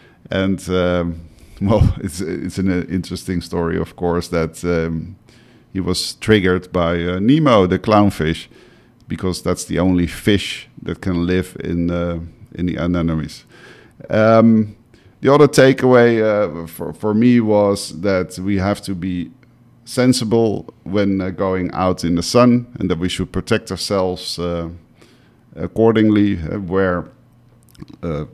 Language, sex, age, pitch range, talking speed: English, male, 50-69, 85-100 Hz, 140 wpm